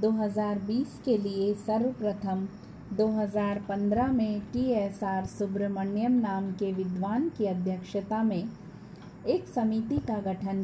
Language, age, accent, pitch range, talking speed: Hindi, 20-39, native, 200-230 Hz, 115 wpm